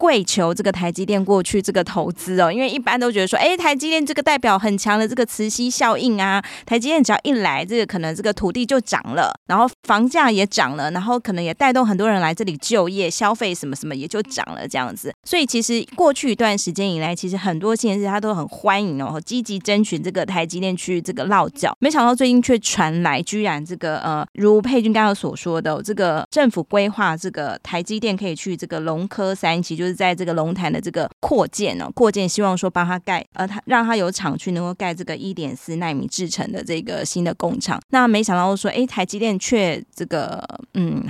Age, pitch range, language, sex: 20-39, 175-230 Hz, Chinese, female